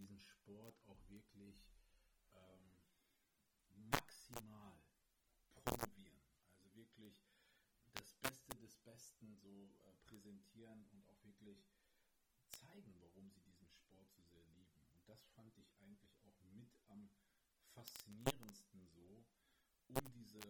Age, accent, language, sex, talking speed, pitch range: 40-59, German, German, male, 115 wpm, 95-110 Hz